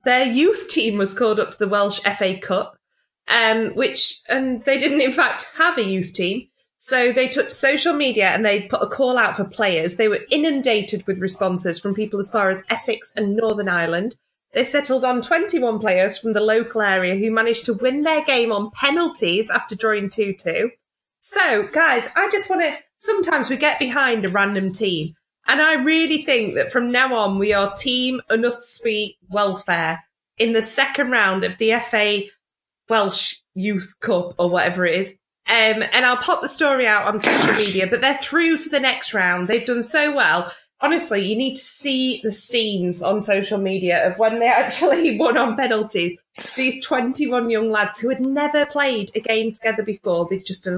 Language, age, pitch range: English, 20-39, 200-265 Hz